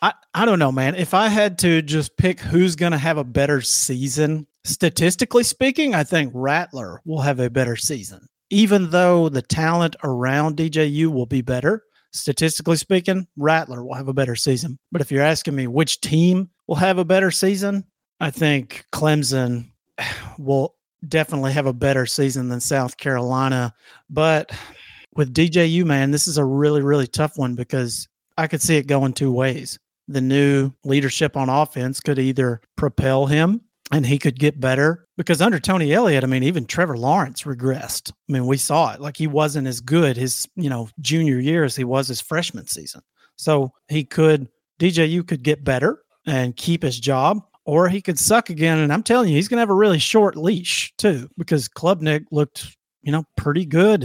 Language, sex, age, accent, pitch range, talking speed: English, male, 40-59, American, 135-165 Hz, 190 wpm